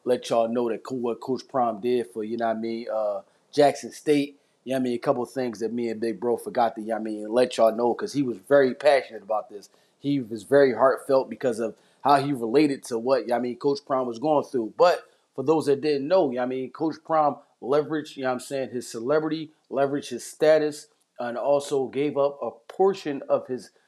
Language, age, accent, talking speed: English, 30-49, American, 255 wpm